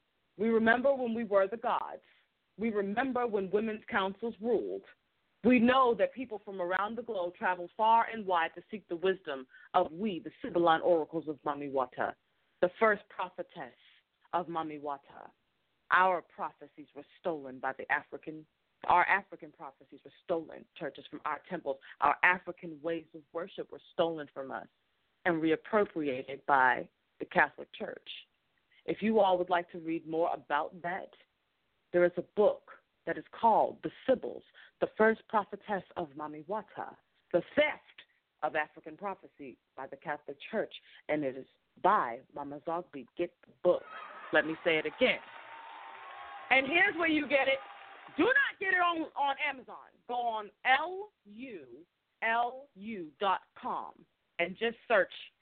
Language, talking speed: English, 150 wpm